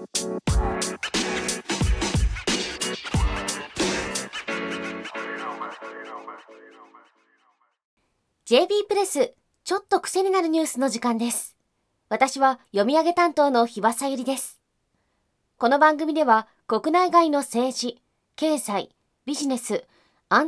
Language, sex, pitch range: Japanese, female, 230-325 Hz